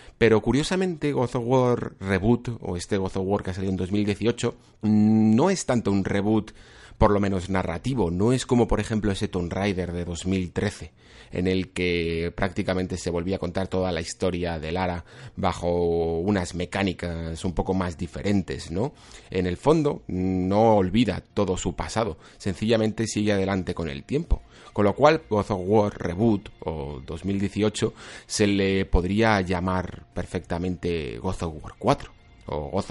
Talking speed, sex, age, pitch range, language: 165 wpm, male, 30-49, 90-110 Hz, Spanish